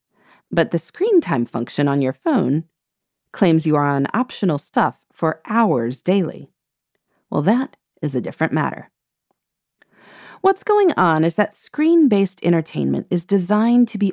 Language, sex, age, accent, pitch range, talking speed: English, female, 30-49, American, 160-255 Hz, 145 wpm